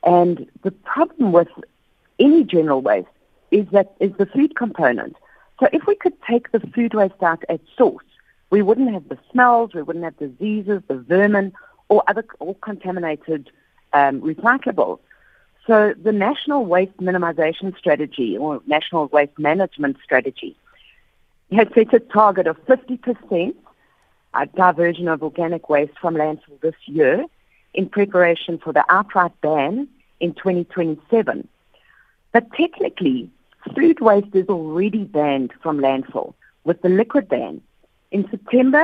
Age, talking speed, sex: 50-69, 135 wpm, female